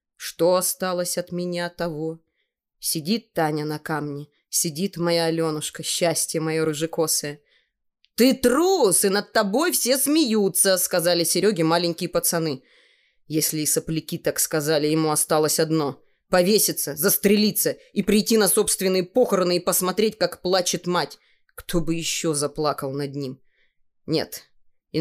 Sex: female